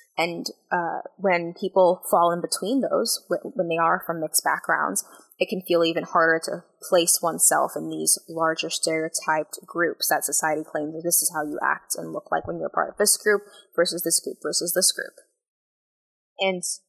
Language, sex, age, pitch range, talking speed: English, female, 10-29, 160-185 Hz, 190 wpm